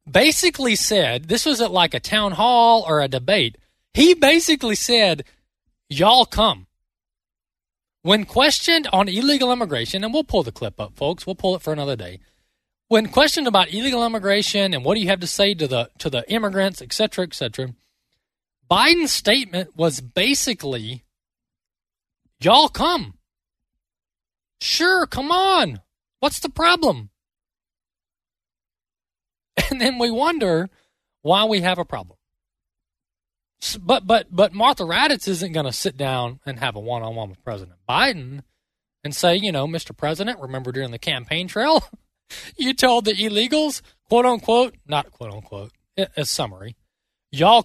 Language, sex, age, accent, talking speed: English, male, 20-39, American, 150 wpm